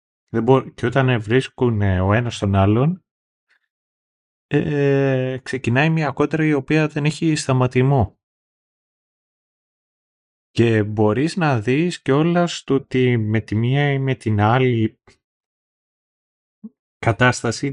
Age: 30-49